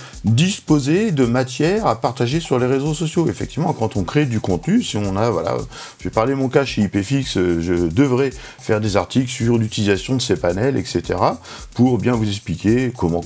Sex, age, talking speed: male, 50-69, 190 wpm